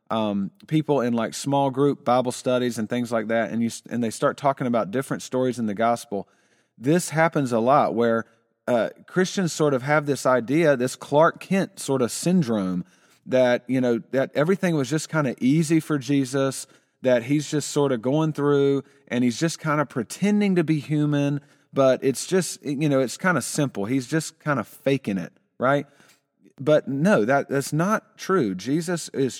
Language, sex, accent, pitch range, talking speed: English, male, American, 125-160 Hz, 190 wpm